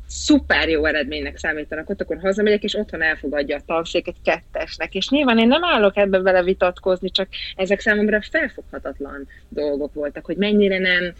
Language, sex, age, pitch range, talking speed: Hungarian, female, 20-39, 150-185 Hz, 165 wpm